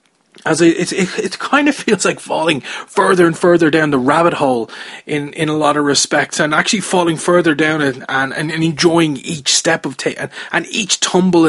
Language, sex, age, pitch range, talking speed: English, male, 20-39, 135-165 Hz, 205 wpm